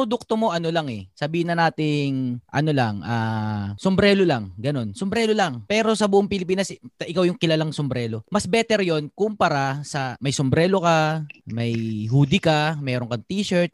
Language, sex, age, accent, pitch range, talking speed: Filipino, male, 20-39, native, 125-195 Hz, 165 wpm